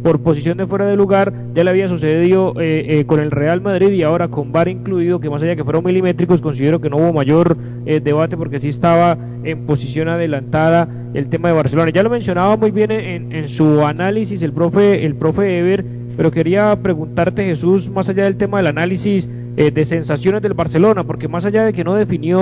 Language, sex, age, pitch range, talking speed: Spanish, male, 30-49, 155-190 Hz, 215 wpm